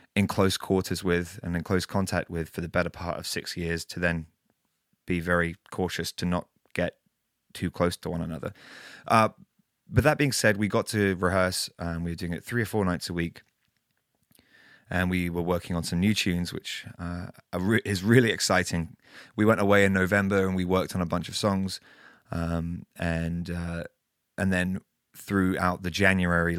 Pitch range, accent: 85-100 Hz, British